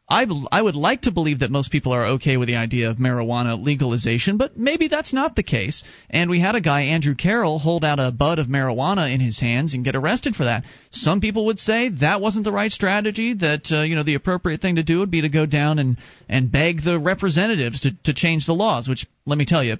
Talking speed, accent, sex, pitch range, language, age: 250 wpm, American, male, 125-170 Hz, English, 30-49